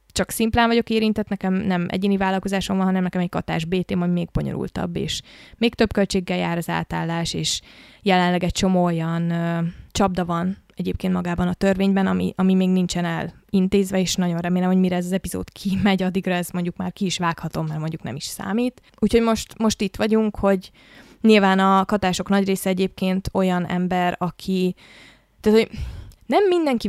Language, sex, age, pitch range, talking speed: Hungarian, female, 20-39, 175-205 Hz, 180 wpm